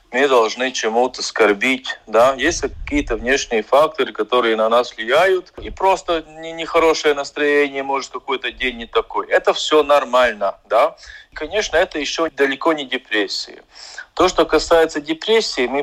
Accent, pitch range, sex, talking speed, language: native, 125-160 Hz, male, 140 wpm, Russian